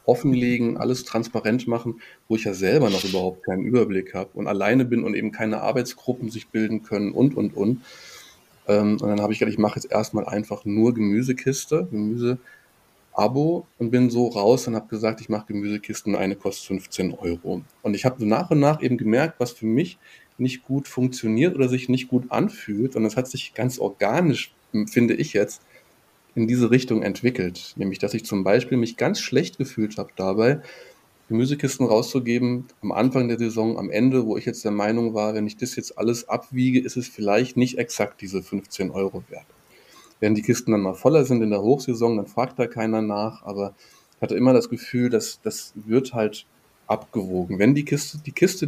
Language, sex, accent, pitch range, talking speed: German, male, German, 105-125 Hz, 190 wpm